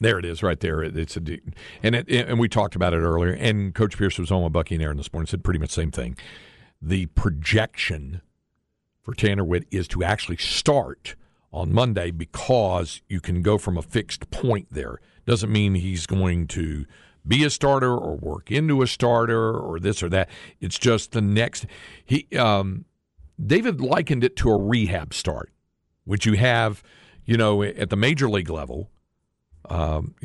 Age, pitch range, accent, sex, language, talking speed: 50-69, 85-115 Hz, American, male, English, 185 wpm